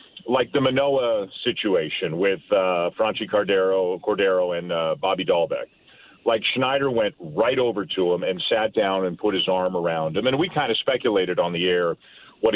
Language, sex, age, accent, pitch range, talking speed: English, male, 40-59, American, 100-125 Hz, 180 wpm